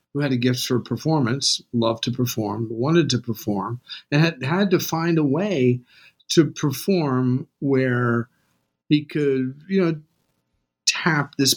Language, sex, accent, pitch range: English, male, American, 115-160 Hz